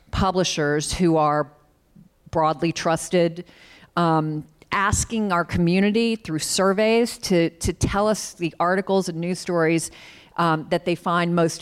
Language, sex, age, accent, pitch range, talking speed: English, female, 40-59, American, 160-195 Hz, 130 wpm